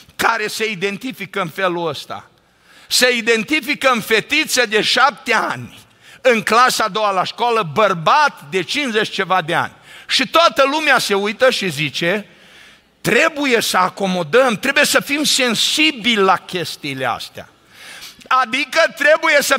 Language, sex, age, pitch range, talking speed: Romanian, male, 50-69, 205-280 Hz, 140 wpm